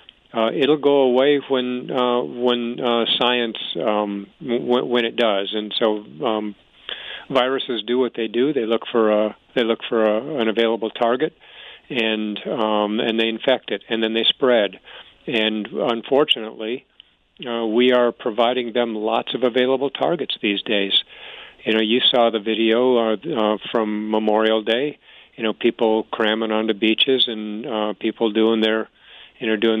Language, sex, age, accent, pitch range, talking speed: English, male, 50-69, American, 110-125 Hz, 165 wpm